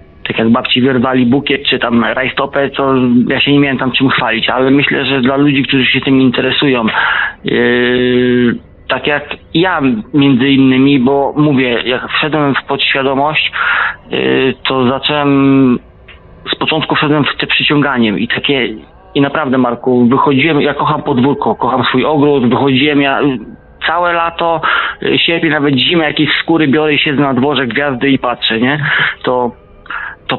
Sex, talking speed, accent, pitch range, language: male, 155 wpm, native, 125-145 Hz, Polish